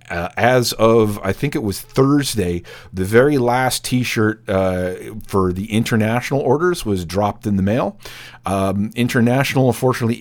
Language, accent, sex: English, American, male